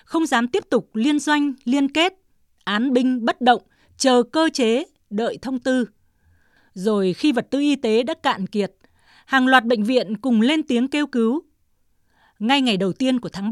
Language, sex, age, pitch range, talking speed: Vietnamese, female, 20-39, 215-275 Hz, 185 wpm